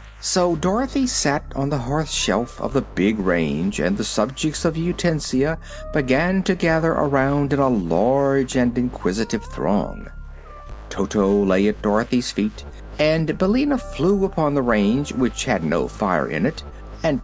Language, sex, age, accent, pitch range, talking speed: English, male, 60-79, American, 110-175 Hz, 150 wpm